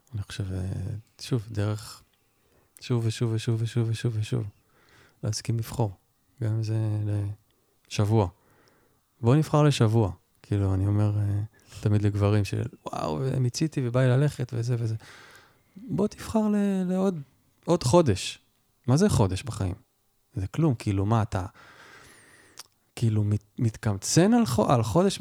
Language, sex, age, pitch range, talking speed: Hebrew, male, 20-39, 105-135 Hz, 115 wpm